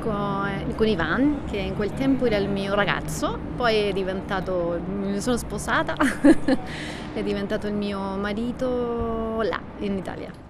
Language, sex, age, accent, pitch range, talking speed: Italian, female, 30-49, native, 195-255 Hz, 145 wpm